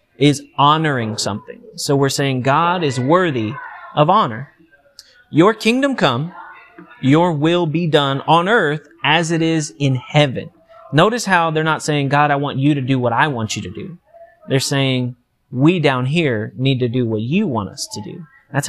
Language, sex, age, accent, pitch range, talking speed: English, male, 30-49, American, 130-165 Hz, 185 wpm